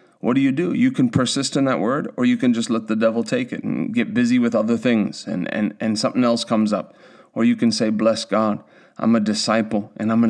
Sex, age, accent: male, 30-49, American